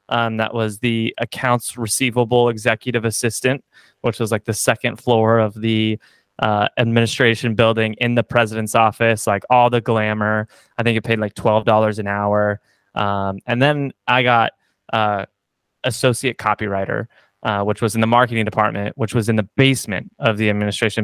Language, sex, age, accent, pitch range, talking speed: English, male, 20-39, American, 110-125 Hz, 165 wpm